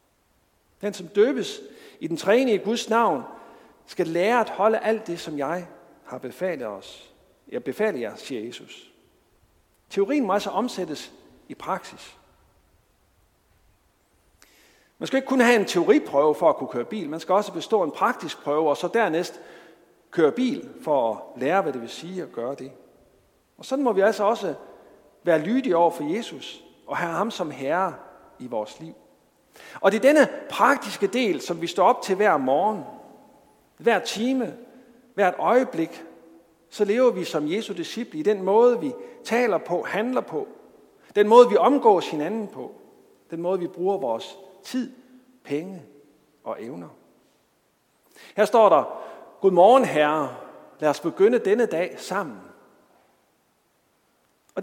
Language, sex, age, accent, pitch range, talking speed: Danish, male, 50-69, native, 165-250 Hz, 155 wpm